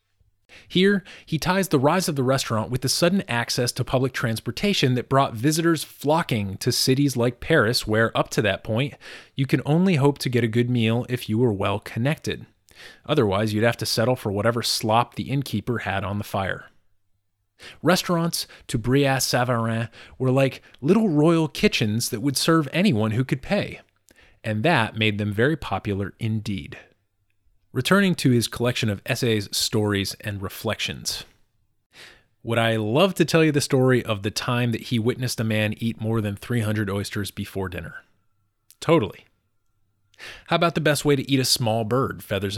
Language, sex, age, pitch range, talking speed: English, male, 30-49, 105-150 Hz, 170 wpm